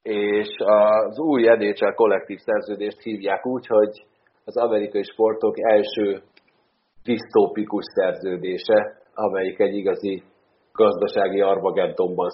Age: 40-59